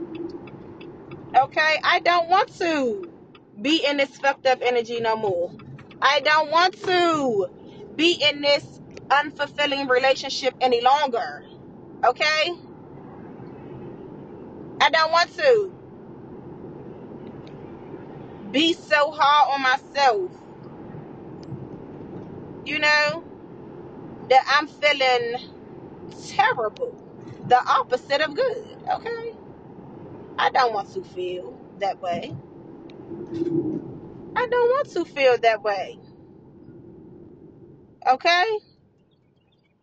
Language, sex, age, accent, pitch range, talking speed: English, female, 30-49, American, 245-345 Hz, 90 wpm